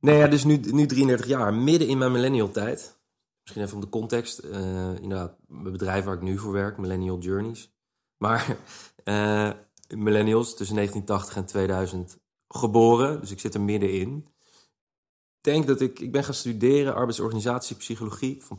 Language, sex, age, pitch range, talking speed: Dutch, male, 20-39, 95-120 Hz, 170 wpm